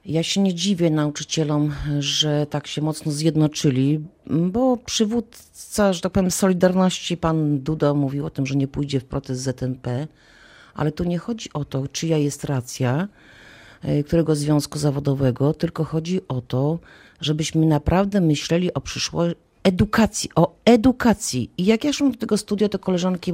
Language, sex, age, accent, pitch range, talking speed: Polish, female, 40-59, native, 145-185 Hz, 155 wpm